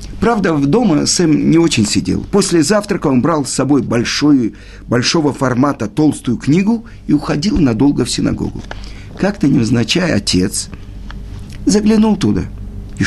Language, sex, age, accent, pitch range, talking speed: Russian, male, 50-69, native, 100-150 Hz, 135 wpm